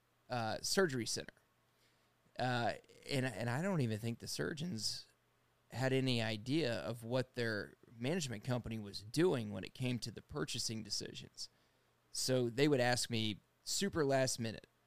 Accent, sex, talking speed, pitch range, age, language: American, male, 150 wpm, 110-135 Hz, 30-49, English